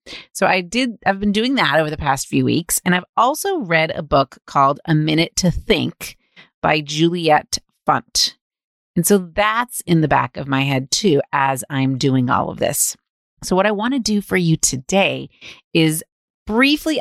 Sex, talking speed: female, 185 wpm